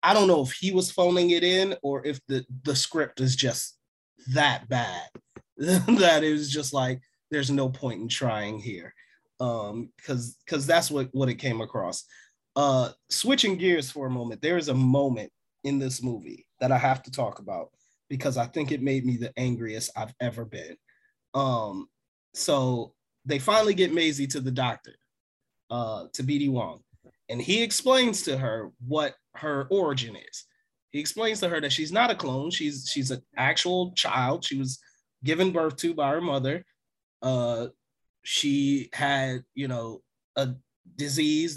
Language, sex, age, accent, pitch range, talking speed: English, male, 30-49, American, 130-170 Hz, 170 wpm